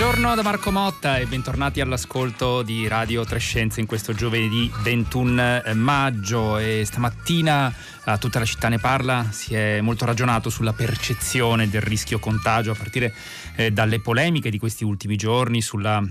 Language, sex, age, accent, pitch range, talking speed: Italian, male, 30-49, native, 110-125 Hz, 155 wpm